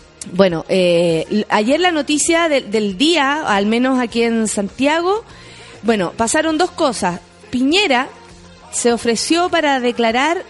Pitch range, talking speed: 185-270 Hz, 125 wpm